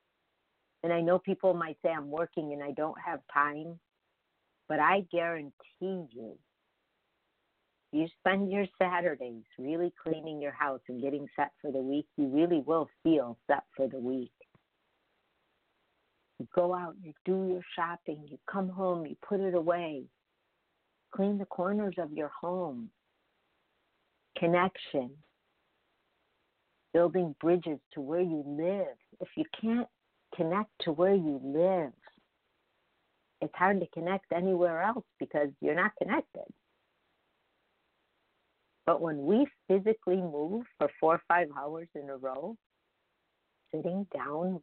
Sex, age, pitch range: female, 50-69, 150-190 Hz